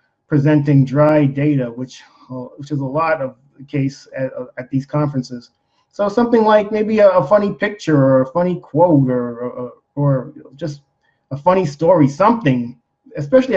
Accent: American